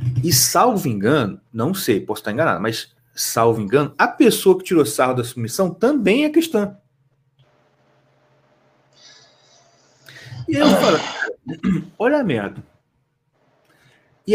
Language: Portuguese